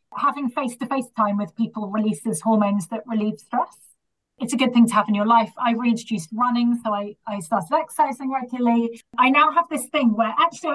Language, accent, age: English, British, 30-49